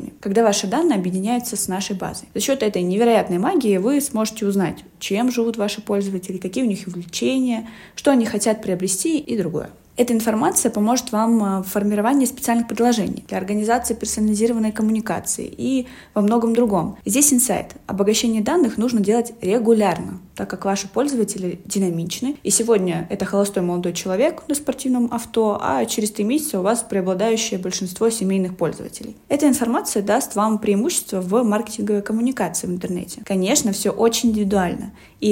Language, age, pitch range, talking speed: Russian, 20-39, 195-235 Hz, 155 wpm